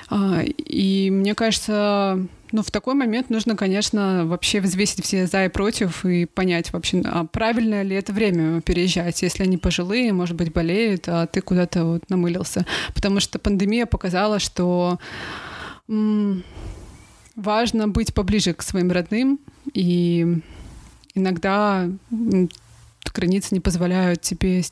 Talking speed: 130 wpm